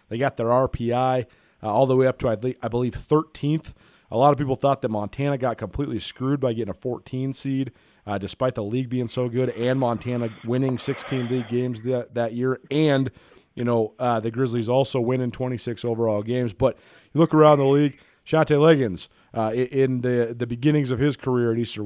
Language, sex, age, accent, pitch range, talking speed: English, male, 30-49, American, 115-140 Hz, 200 wpm